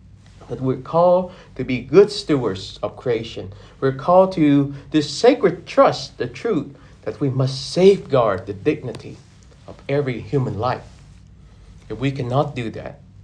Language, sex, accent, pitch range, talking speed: English, male, American, 105-140 Hz, 145 wpm